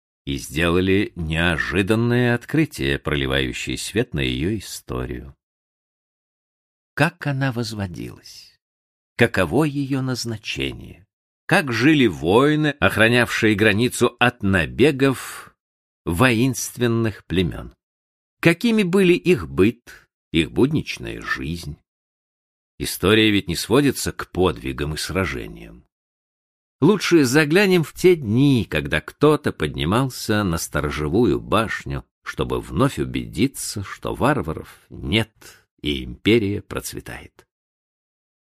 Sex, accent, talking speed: male, native, 90 wpm